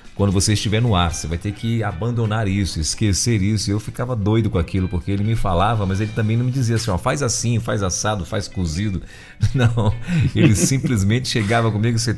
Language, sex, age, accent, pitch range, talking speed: Portuguese, male, 40-59, Brazilian, 95-120 Hz, 210 wpm